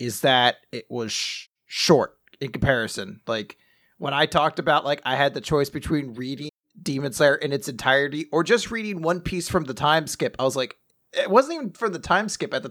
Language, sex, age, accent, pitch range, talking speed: English, male, 30-49, American, 130-165 Hz, 210 wpm